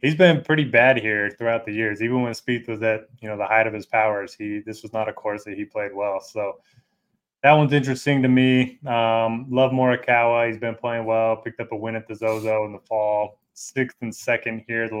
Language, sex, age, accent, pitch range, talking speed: English, male, 20-39, American, 110-125 Hz, 230 wpm